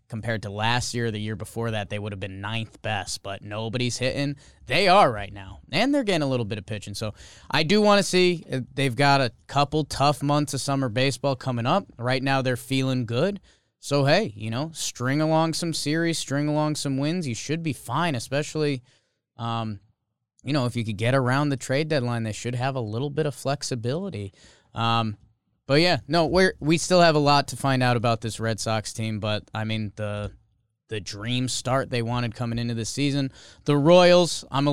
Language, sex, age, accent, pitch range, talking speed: English, male, 20-39, American, 115-145 Hz, 210 wpm